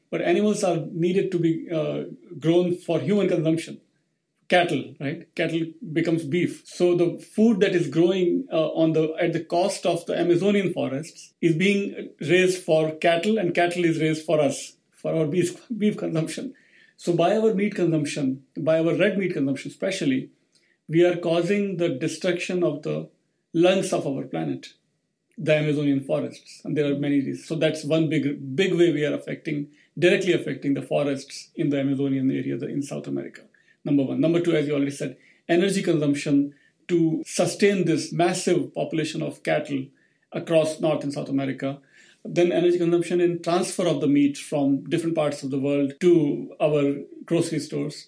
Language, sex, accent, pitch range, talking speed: English, male, Indian, 145-175 Hz, 175 wpm